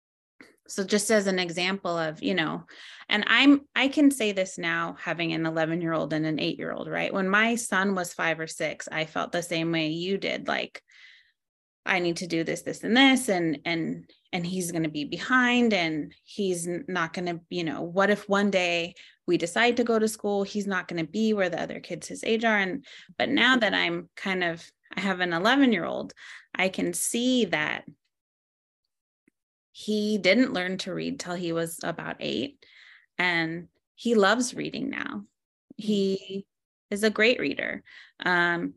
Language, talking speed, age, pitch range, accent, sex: English, 190 wpm, 20-39, 165-215 Hz, American, female